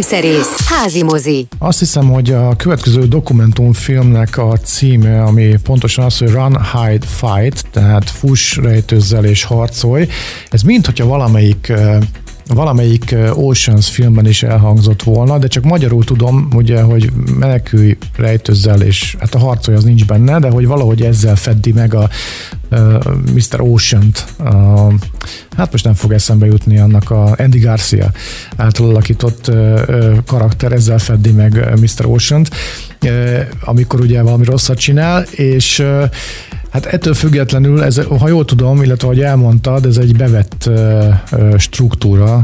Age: 50-69